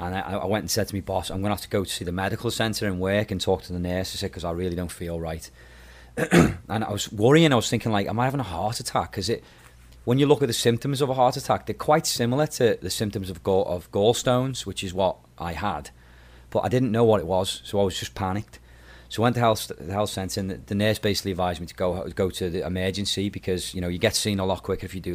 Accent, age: British, 30-49